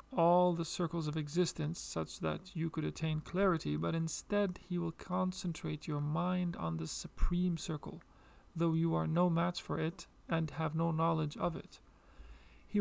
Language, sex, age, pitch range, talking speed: English, male, 40-59, 150-180 Hz, 170 wpm